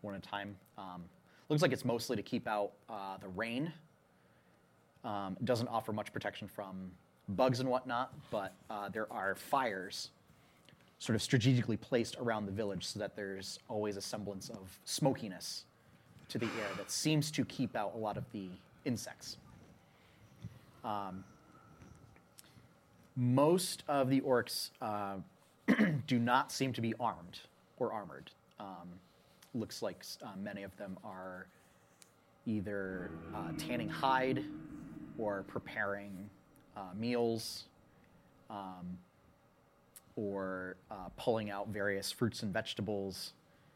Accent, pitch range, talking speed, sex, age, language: American, 95-120 Hz, 130 wpm, male, 30-49, English